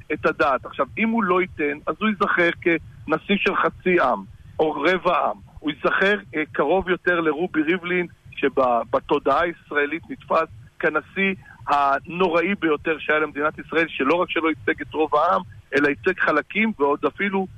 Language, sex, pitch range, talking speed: Hebrew, male, 145-185 Hz, 155 wpm